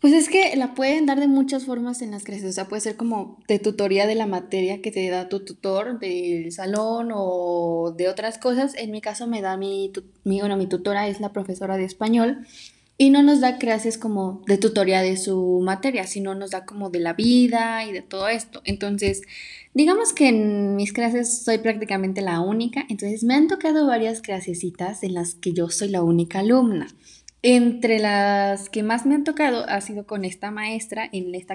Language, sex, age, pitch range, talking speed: Spanish, female, 10-29, 195-235 Hz, 205 wpm